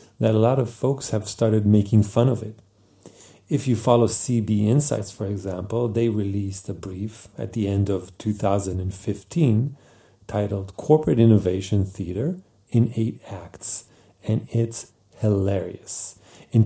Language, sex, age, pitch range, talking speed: English, male, 40-59, 95-115 Hz, 135 wpm